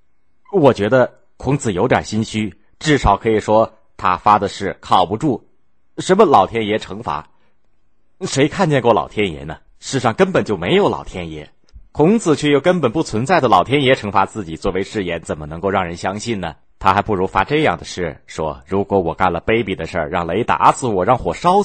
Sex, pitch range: male, 85-110 Hz